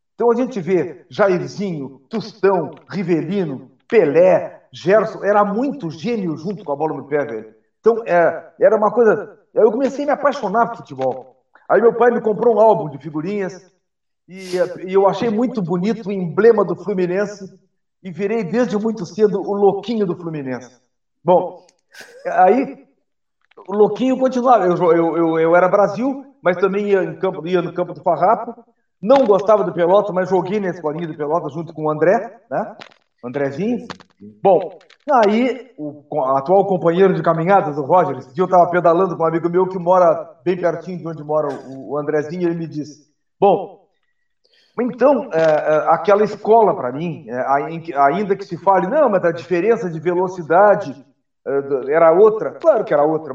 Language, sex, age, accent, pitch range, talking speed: Portuguese, male, 50-69, Brazilian, 165-225 Hz, 170 wpm